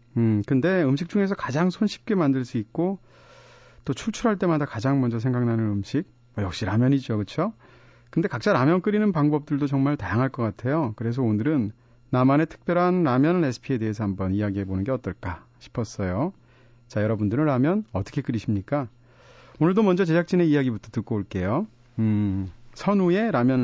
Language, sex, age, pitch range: Korean, male, 40-59, 110-150 Hz